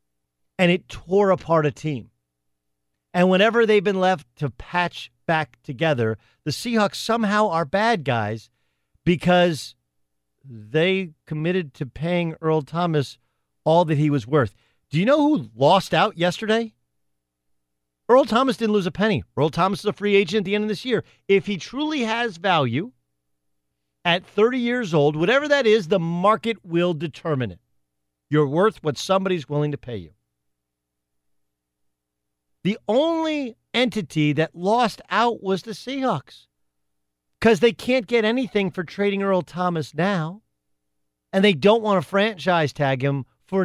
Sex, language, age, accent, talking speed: male, English, 50-69, American, 155 wpm